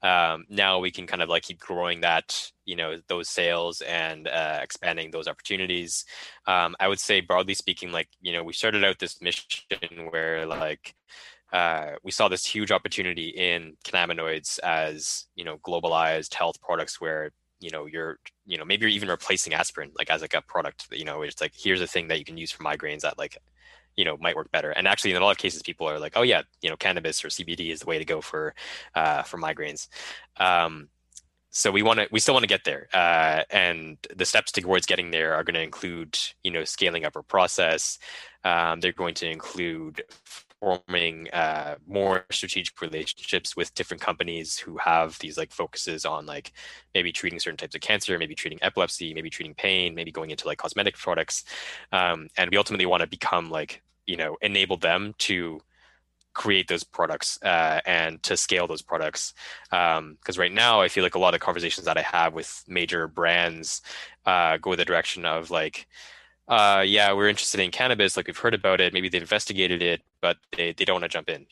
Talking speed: 205 wpm